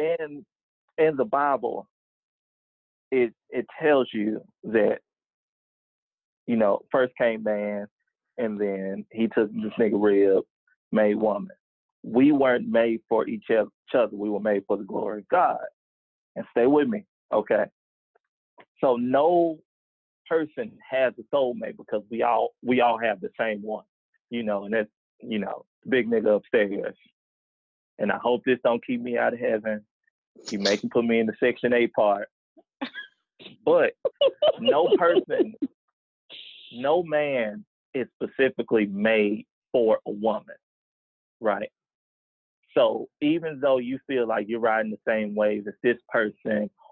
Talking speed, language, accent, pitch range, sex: 145 wpm, English, American, 105-145 Hz, male